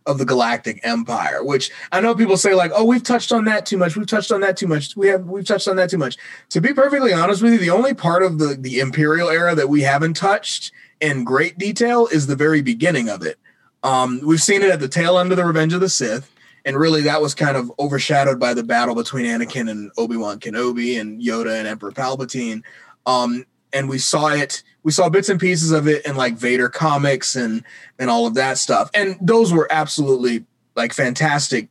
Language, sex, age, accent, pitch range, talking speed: English, male, 30-49, American, 125-160 Hz, 230 wpm